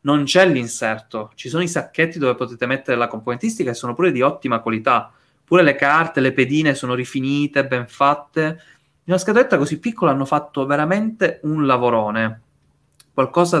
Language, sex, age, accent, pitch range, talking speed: Italian, male, 20-39, native, 125-175 Hz, 170 wpm